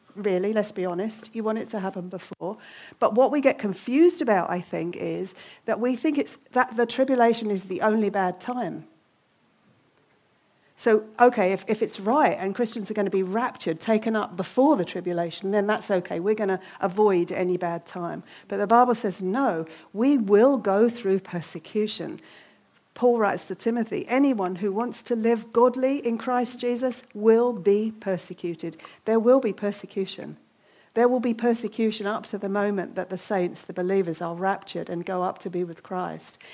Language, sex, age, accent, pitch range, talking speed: English, female, 50-69, British, 180-230 Hz, 180 wpm